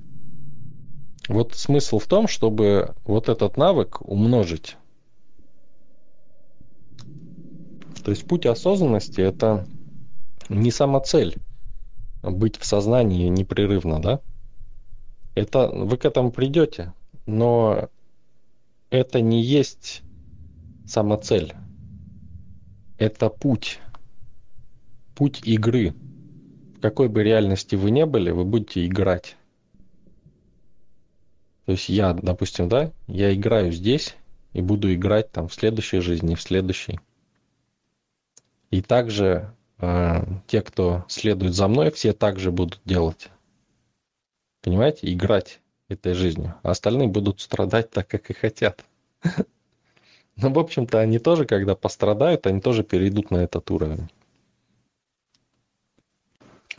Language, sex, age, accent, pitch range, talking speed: Russian, male, 20-39, native, 95-115 Hz, 105 wpm